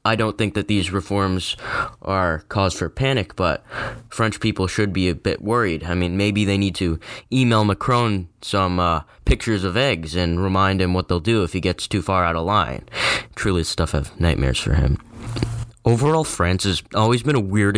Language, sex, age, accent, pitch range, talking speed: English, male, 10-29, American, 90-110 Hz, 195 wpm